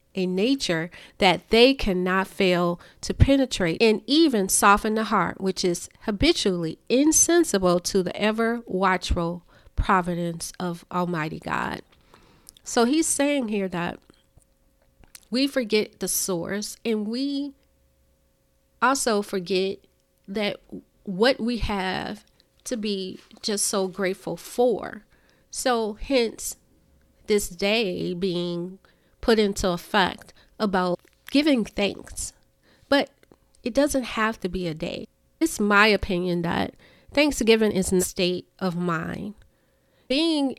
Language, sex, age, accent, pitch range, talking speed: English, female, 40-59, American, 180-225 Hz, 115 wpm